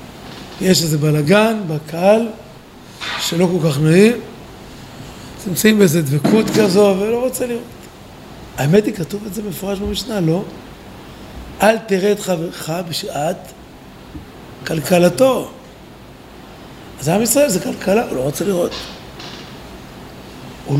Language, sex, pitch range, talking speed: Hebrew, male, 155-215 Hz, 115 wpm